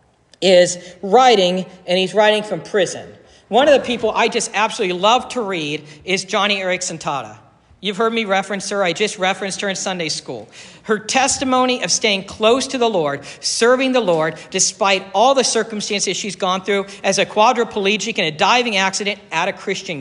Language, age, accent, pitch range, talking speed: English, 50-69, American, 160-200 Hz, 185 wpm